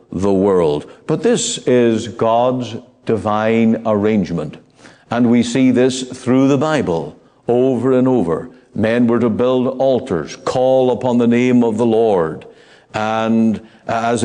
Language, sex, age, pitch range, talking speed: English, male, 60-79, 110-135 Hz, 135 wpm